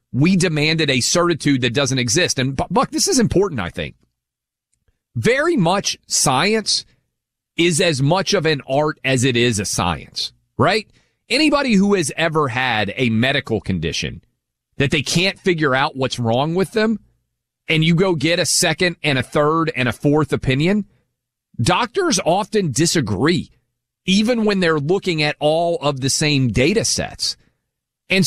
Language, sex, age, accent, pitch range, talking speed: English, male, 40-59, American, 130-190 Hz, 155 wpm